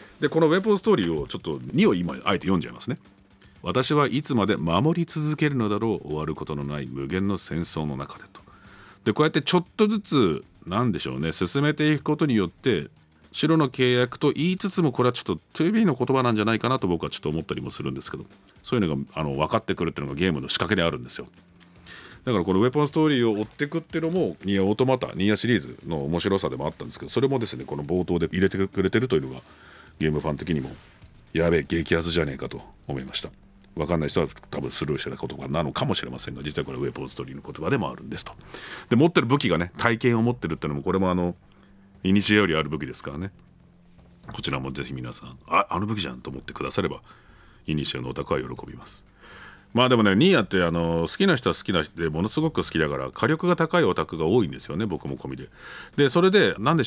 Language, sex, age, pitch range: Japanese, male, 40-59, 80-130 Hz